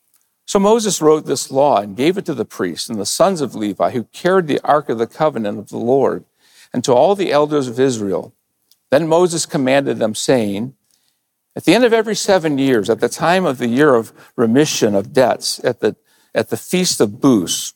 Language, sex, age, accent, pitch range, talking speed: English, male, 50-69, American, 115-180 Hz, 210 wpm